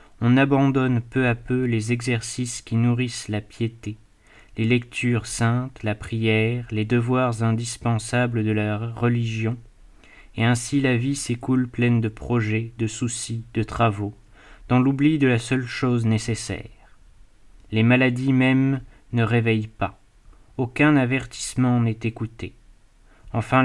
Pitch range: 110-125 Hz